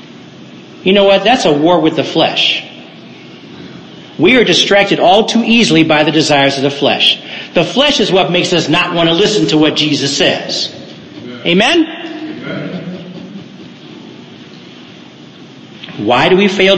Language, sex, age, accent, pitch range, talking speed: English, male, 50-69, American, 150-205 Hz, 145 wpm